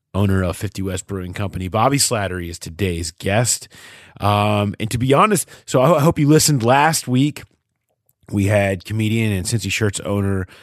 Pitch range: 95-120 Hz